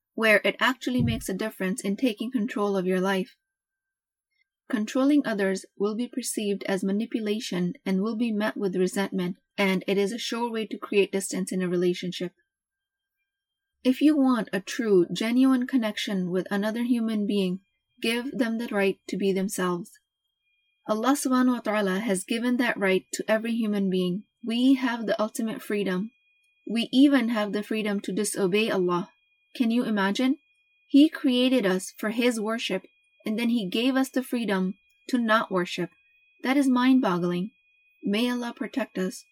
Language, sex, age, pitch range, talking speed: English, female, 20-39, 195-275 Hz, 160 wpm